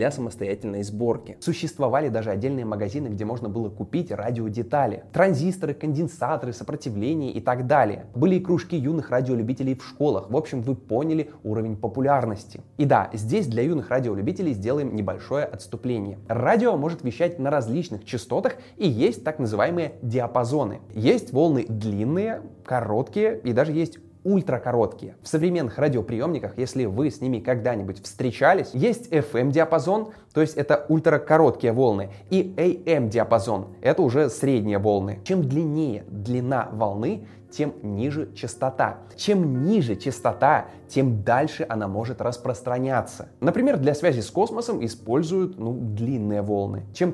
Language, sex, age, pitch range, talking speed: Russian, male, 20-39, 110-155 Hz, 135 wpm